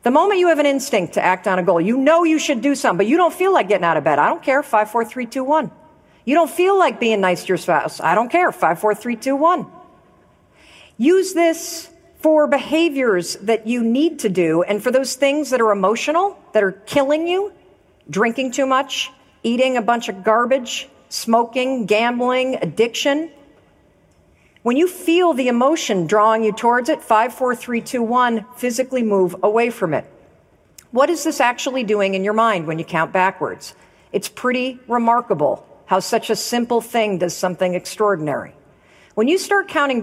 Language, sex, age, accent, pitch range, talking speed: English, female, 50-69, American, 210-280 Hz, 190 wpm